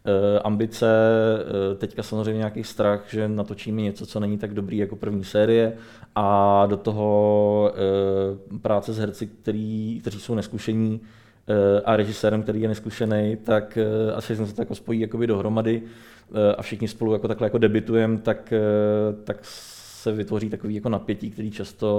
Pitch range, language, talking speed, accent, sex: 100-110 Hz, Czech, 140 wpm, native, male